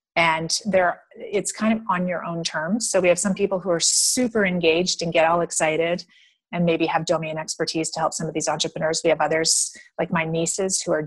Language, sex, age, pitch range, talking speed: English, female, 30-49, 160-195 Hz, 220 wpm